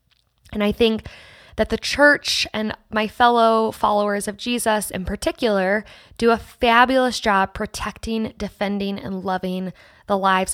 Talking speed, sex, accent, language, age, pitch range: 135 wpm, female, American, English, 20-39, 185-220 Hz